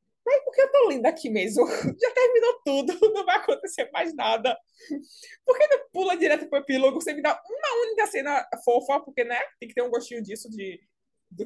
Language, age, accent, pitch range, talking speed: Portuguese, 20-39, Brazilian, 220-330 Hz, 205 wpm